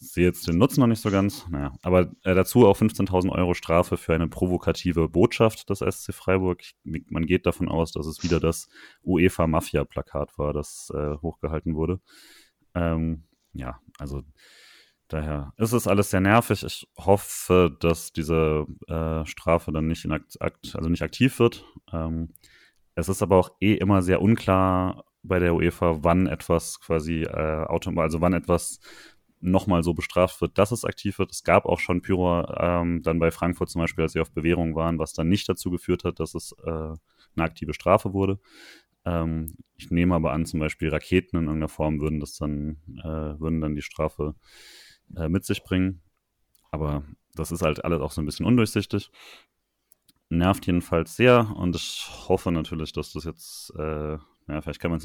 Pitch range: 80-95 Hz